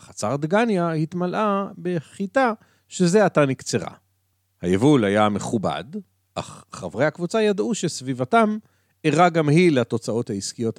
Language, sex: Hebrew, male